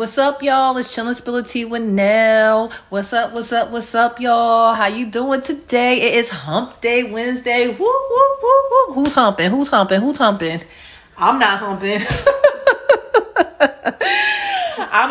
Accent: American